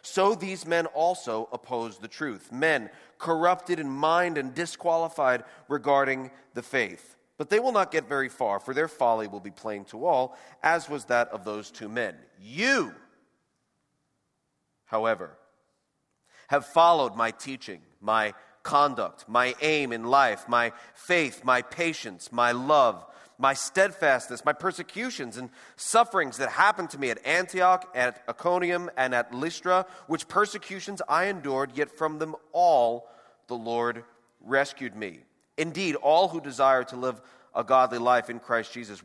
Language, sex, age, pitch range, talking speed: English, male, 40-59, 120-165 Hz, 150 wpm